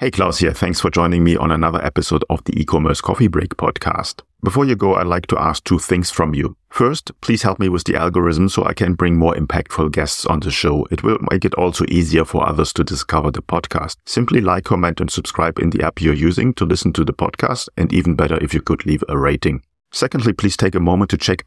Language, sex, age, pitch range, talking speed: English, male, 40-59, 85-110 Hz, 245 wpm